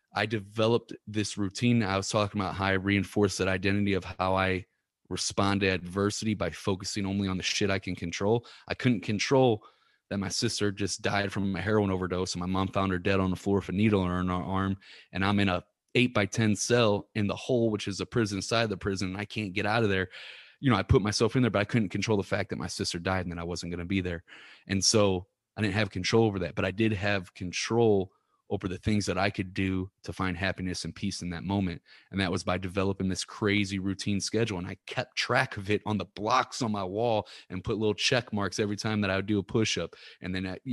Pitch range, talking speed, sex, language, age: 95-105 Hz, 250 wpm, male, English, 20-39